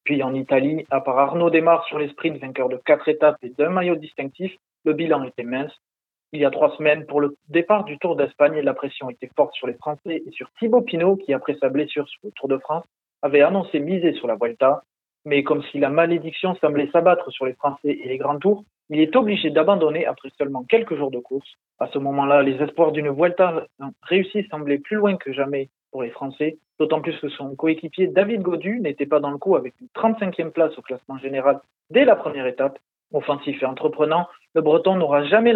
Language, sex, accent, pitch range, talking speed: French, male, French, 140-180 Hz, 220 wpm